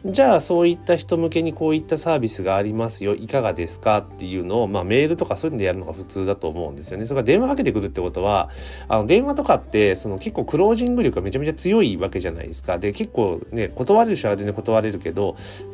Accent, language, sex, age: native, Japanese, male, 30-49